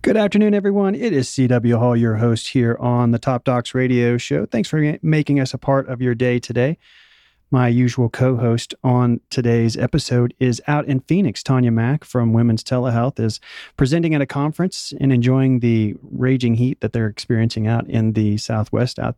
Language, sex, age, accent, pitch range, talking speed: English, male, 40-59, American, 120-135 Hz, 185 wpm